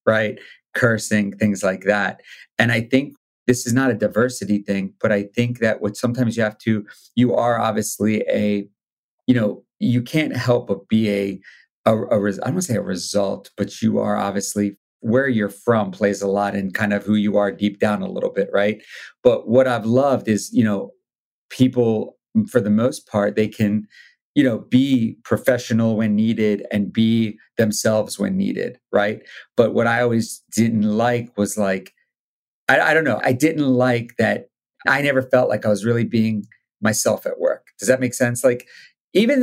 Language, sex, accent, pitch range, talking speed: English, male, American, 105-125 Hz, 190 wpm